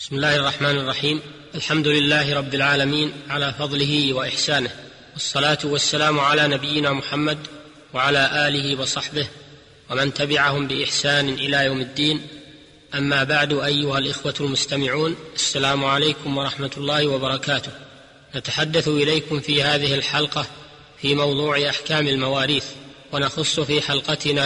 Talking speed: 115 wpm